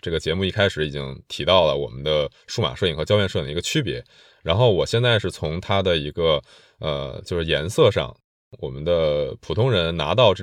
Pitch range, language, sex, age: 80-120 Hz, Chinese, male, 20-39